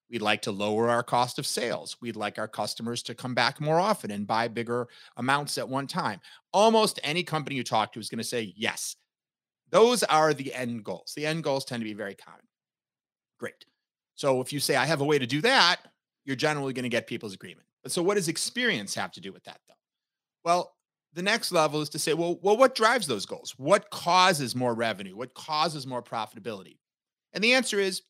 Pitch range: 125-180 Hz